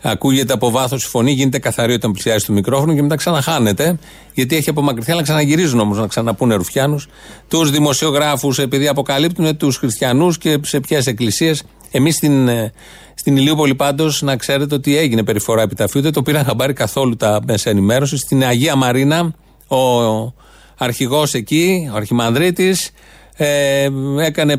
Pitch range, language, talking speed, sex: 125-160 Hz, Greek, 155 wpm, male